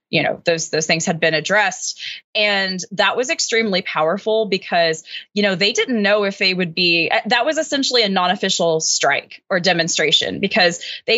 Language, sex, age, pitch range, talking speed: English, female, 20-39, 180-225 Hz, 180 wpm